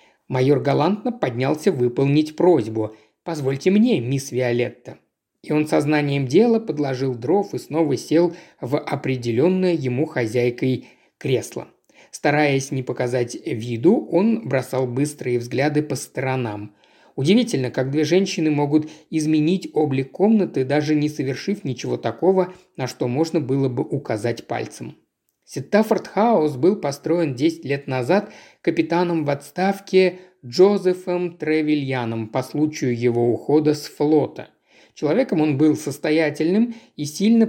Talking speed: 120 wpm